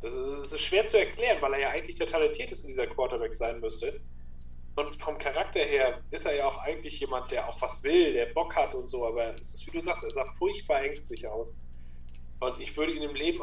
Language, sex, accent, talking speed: German, male, German, 235 wpm